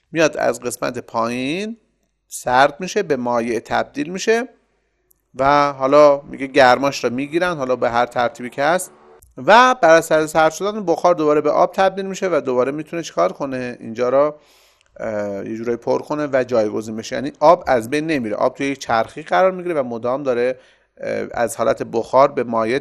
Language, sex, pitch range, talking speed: Persian, male, 120-165 Hz, 175 wpm